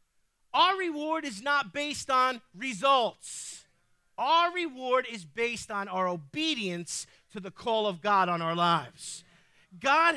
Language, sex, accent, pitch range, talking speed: English, male, American, 190-300 Hz, 135 wpm